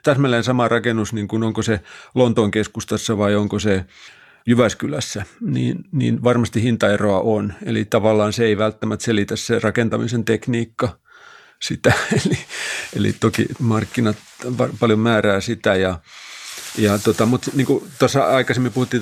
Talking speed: 140 wpm